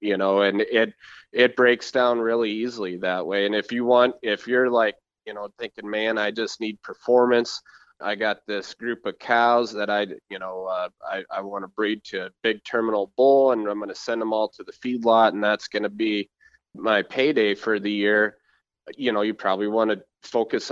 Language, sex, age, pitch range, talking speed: English, male, 30-49, 105-115 Hz, 210 wpm